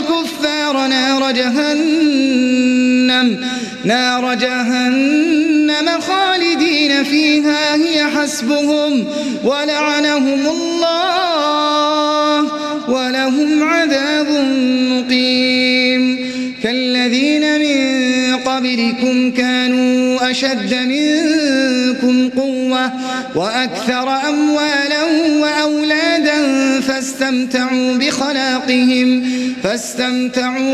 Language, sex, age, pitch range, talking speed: Arabic, male, 30-49, 255-295 Hz, 45 wpm